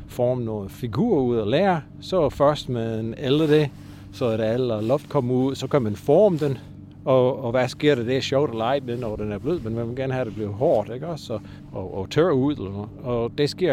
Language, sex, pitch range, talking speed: Danish, male, 100-140 Hz, 255 wpm